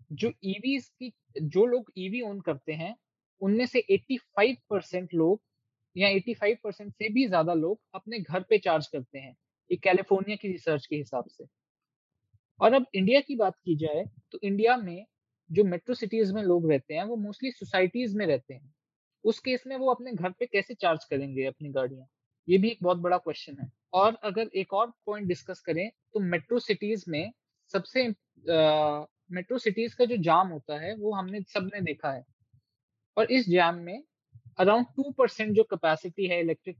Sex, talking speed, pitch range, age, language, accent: male, 185 wpm, 155-220 Hz, 20-39, Hindi, native